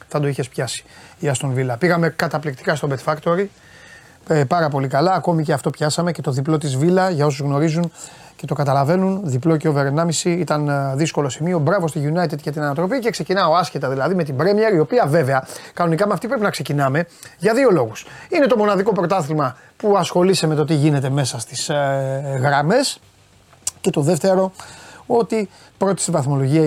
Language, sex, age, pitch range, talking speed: Greek, male, 30-49, 150-200 Hz, 185 wpm